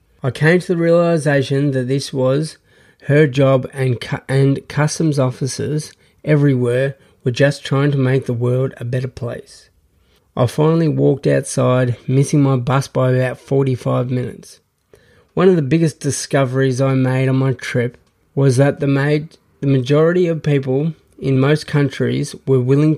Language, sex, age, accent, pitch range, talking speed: English, male, 20-39, Australian, 130-145 Hz, 150 wpm